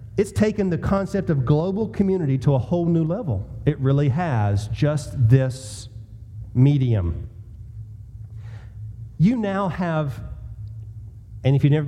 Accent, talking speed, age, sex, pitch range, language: American, 125 wpm, 40-59, male, 110-155 Hz, English